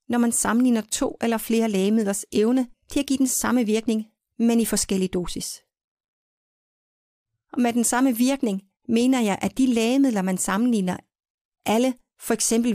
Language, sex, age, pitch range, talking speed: English, female, 40-59, 200-250 Hz, 155 wpm